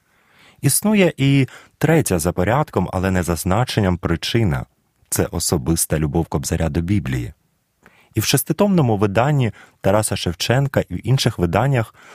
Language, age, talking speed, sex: Ukrainian, 30-49, 135 wpm, male